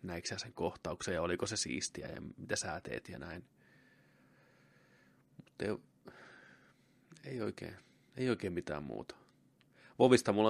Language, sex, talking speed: Finnish, male, 125 wpm